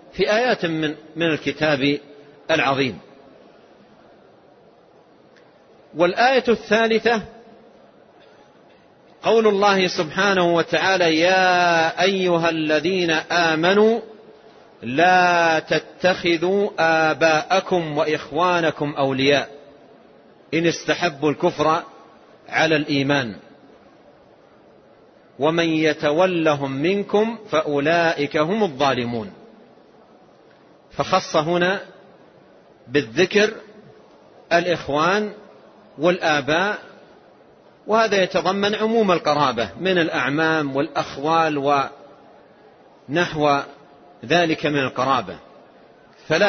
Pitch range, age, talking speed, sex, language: 150-185 Hz, 40-59, 60 wpm, male, Arabic